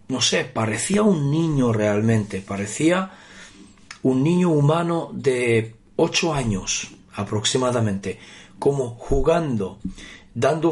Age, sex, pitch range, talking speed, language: 40-59, male, 115-150 Hz, 95 wpm, Spanish